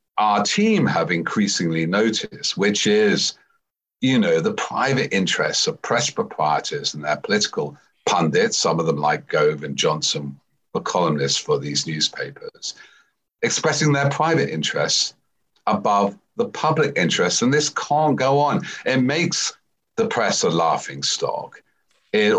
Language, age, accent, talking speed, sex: English, 50-69, British, 140 wpm, male